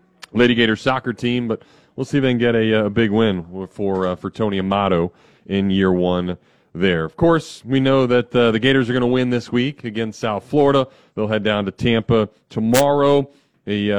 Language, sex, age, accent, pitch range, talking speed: English, male, 40-59, American, 105-125 Hz, 205 wpm